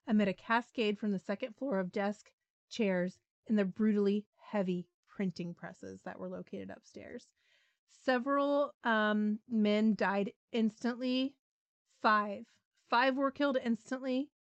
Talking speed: 125 wpm